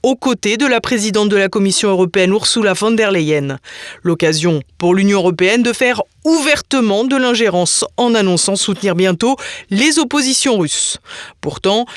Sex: female